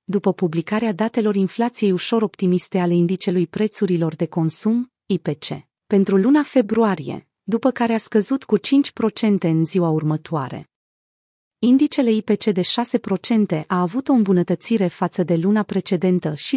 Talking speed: 135 wpm